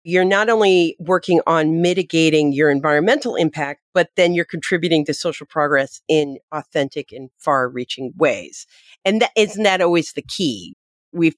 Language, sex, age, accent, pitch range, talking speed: English, female, 40-59, American, 150-180 Hz, 160 wpm